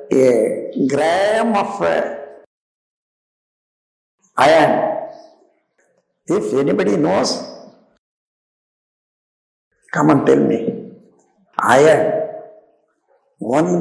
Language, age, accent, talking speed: Tamil, 60-79, native, 55 wpm